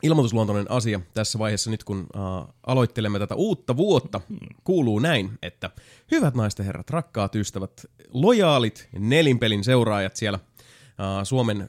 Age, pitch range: 30-49, 100-125 Hz